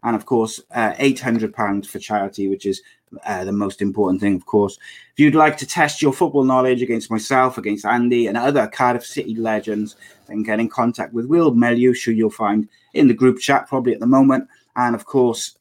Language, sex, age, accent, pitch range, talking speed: English, male, 30-49, British, 110-135 Hz, 210 wpm